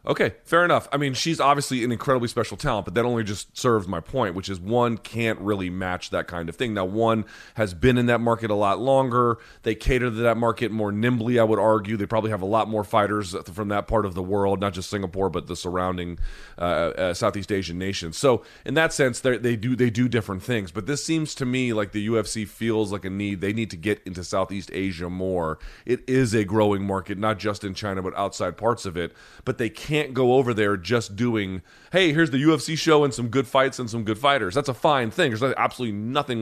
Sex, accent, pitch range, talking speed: male, American, 100-130 Hz, 235 wpm